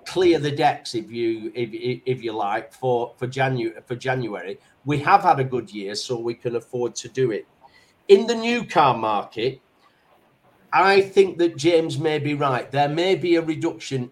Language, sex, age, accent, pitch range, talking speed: English, male, 40-59, British, 125-145 Hz, 190 wpm